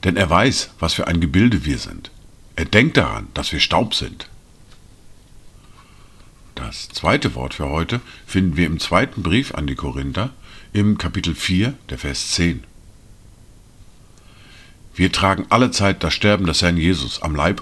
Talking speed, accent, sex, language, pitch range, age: 155 wpm, German, male, German, 90-110 Hz, 50-69